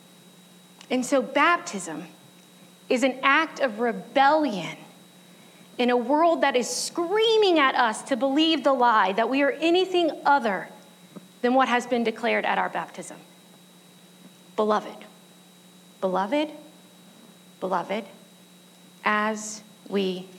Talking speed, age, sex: 110 wpm, 30-49, female